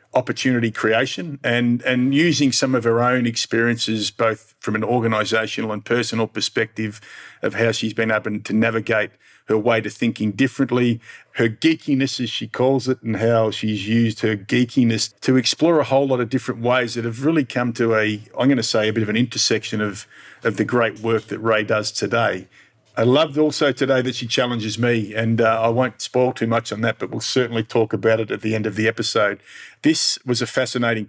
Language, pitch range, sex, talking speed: English, 110-125 Hz, male, 205 wpm